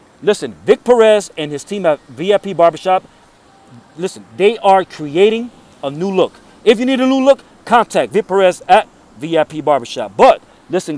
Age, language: 40-59, English